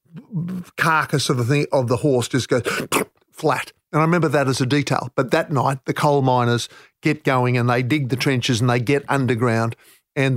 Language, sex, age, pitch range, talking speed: English, male, 50-69, 130-180 Hz, 205 wpm